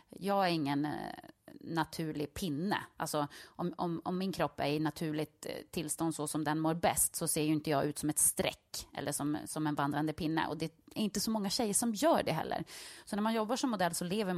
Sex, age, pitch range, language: female, 30-49, 160-215 Hz, English